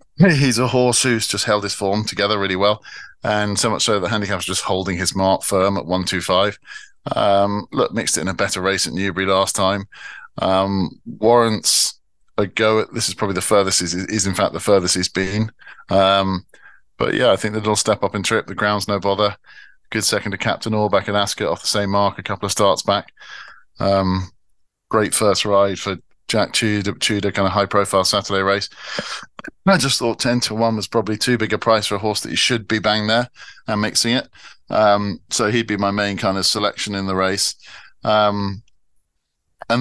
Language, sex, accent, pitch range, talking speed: English, male, British, 95-110 Hz, 210 wpm